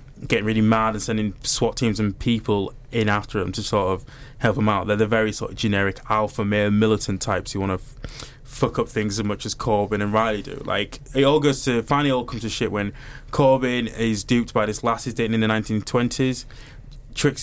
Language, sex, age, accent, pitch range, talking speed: English, male, 20-39, British, 110-135 Hz, 225 wpm